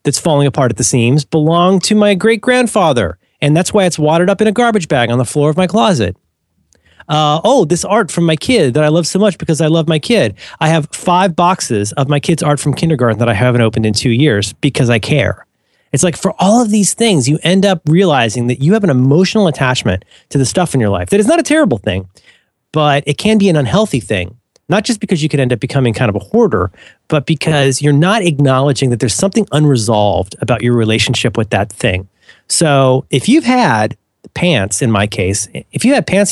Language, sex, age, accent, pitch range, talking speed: English, male, 30-49, American, 120-175 Hz, 230 wpm